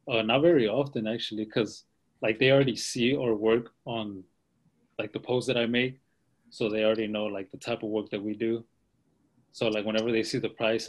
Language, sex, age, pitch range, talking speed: English, male, 20-39, 105-120 Hz, 210 wpm